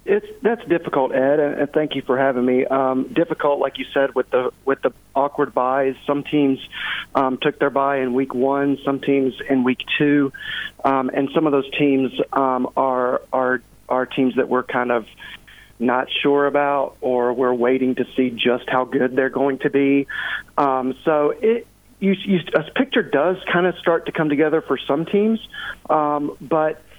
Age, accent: 40-59, American